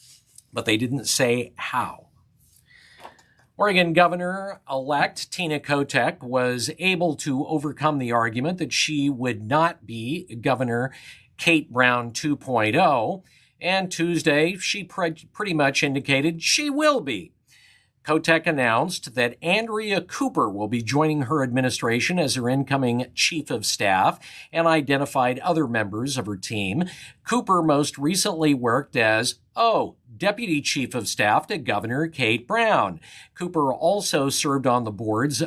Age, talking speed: 50-69, 130 wpm